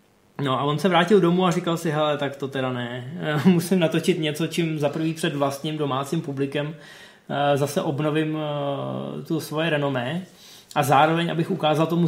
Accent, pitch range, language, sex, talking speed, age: native, 140-180 Hz, Czech, male, 170 wpm, 20-39